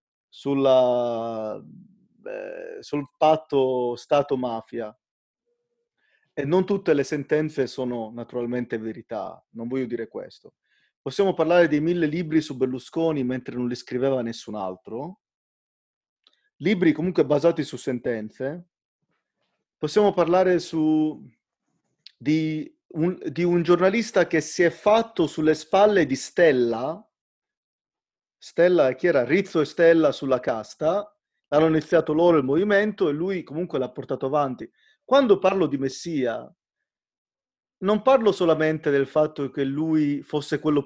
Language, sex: Italian, male